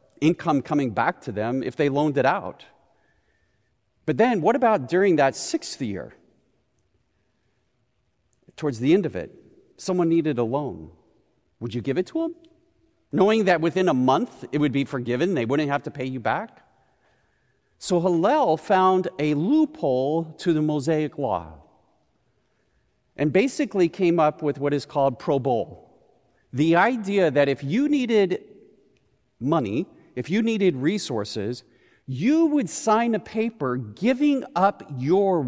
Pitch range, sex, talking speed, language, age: 125-195 Hz, male, 145 wpm, English, 40-59